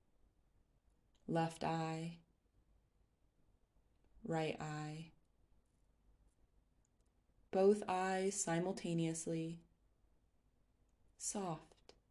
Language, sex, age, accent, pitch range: English, female, 20-39, American, 100-160 Hz